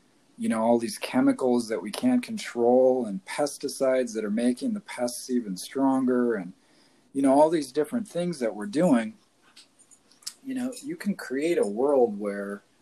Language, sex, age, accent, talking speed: English, male, 40-59, American, 170 wpm